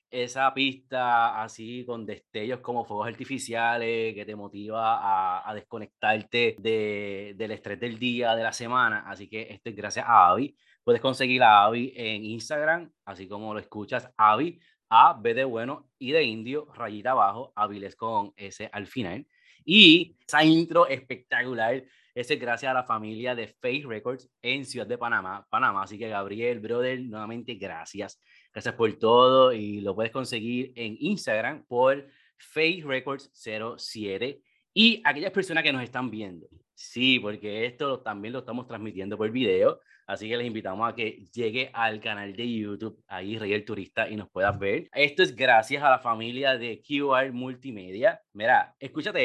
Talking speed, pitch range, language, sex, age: 165 wpm, 110-140 Hz, Spanish, male, 30-49